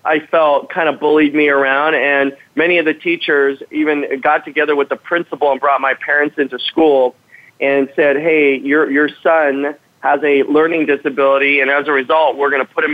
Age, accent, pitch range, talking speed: 40-59, American, 140-165 Hz, 200 wpm